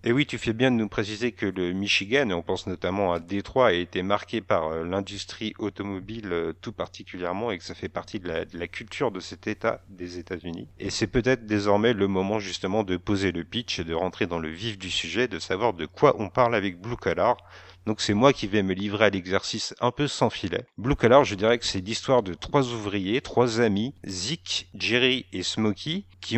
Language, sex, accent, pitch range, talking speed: French, male, French, 95-120 Hz, 225 wpm